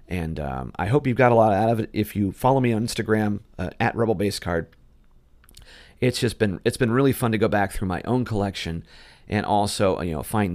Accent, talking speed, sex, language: American, 220 wpm, male, English